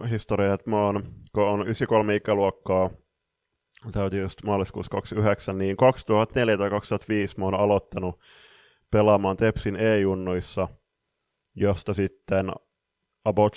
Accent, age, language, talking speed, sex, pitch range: native, 20-39, Finnish, 95 wpm, male, 95-110 Hz